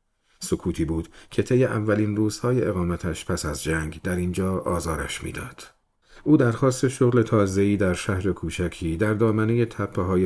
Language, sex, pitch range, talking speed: Persian, male, 85-115 Hz, 145 wpm